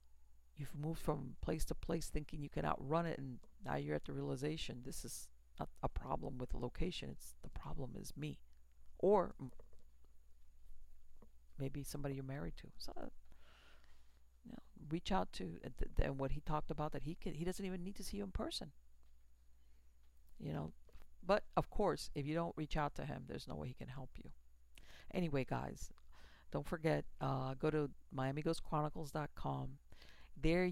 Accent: American